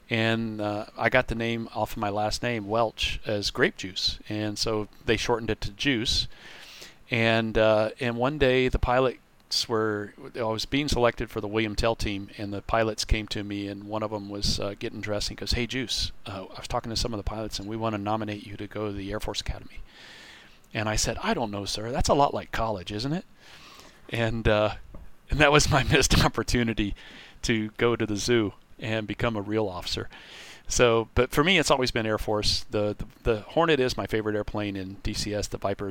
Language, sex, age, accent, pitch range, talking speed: English, male, 40-59, American, 105-120 Hz, 220 wpm